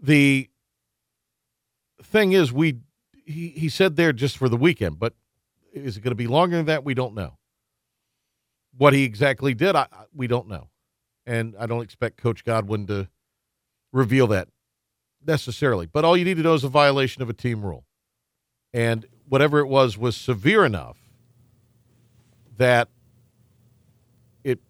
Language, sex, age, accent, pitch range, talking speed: English, male, 50-69, American, 115-140 Hz, 155 wpm